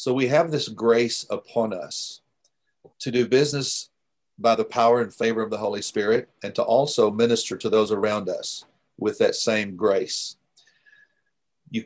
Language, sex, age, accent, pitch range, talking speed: English, male, 50-69, American, 110-140 Hz, 160 wpm